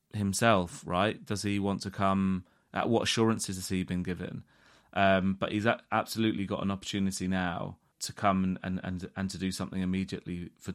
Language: English